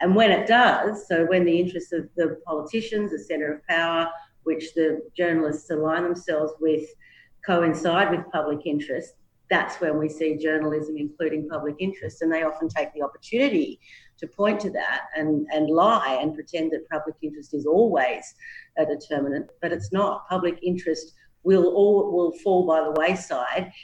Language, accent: English, Australian